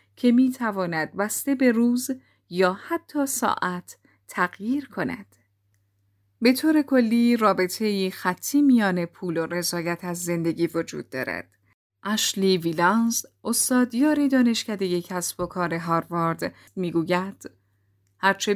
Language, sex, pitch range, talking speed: Persian, female, 170-235 Hz, 115 wpm